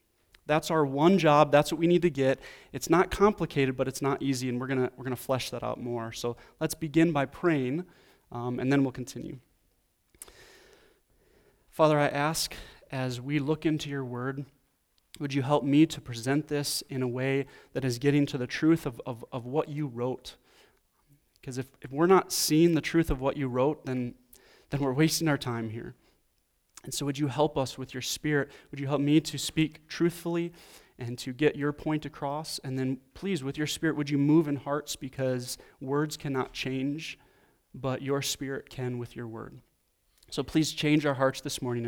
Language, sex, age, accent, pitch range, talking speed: English, male, 30-49, American, 130-160 Hz, 200 wpm